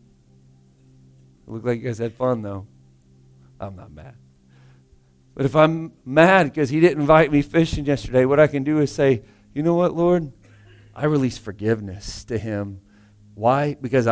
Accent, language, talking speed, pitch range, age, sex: American, English, 160 wpm, 100-145 Hz, 50-69, male